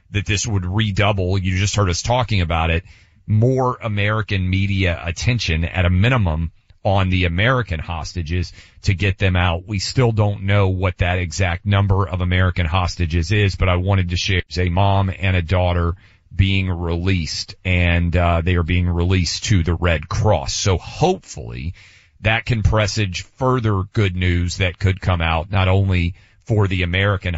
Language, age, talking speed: English, 40-59, 170 wpm